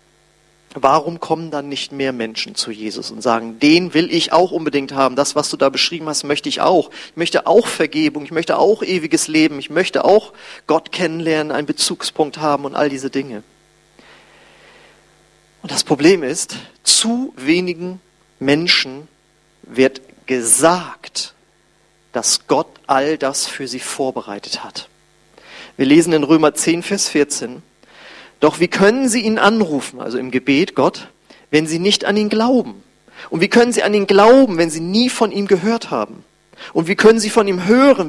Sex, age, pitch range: male, 40-59, 140-205 Hz